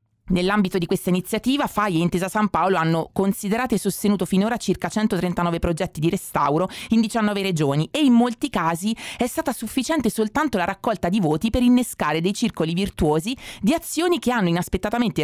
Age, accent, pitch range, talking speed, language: 30-49, native, 165-230 Hz, 175 wpm, Italian